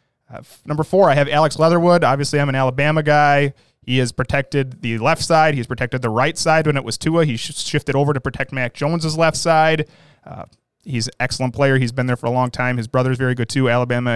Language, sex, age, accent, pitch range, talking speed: English, male, 30-49, American, 125-155 Hz, 235 wpm